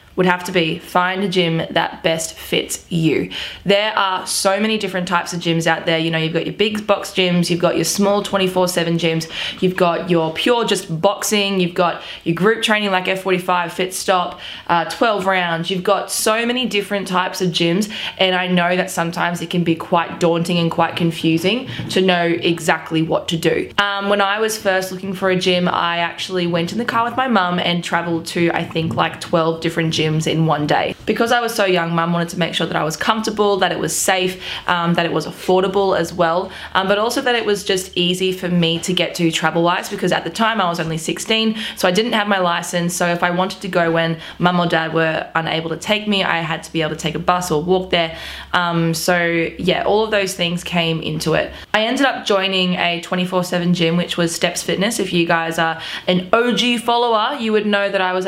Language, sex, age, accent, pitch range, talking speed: English, female, 20-39, Australian, 170-200 Hz, 230 wpm